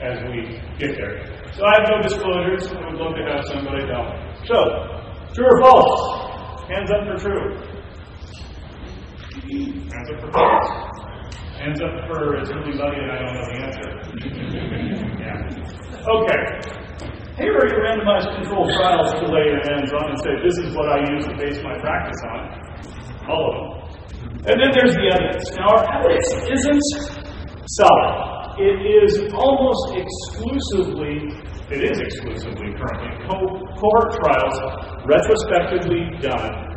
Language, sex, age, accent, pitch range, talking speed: English, male, 40-59, American, 120-200 Hz, 150 wpm